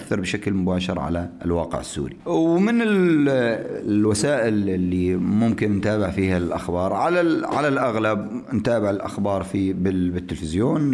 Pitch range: 90-115 Hz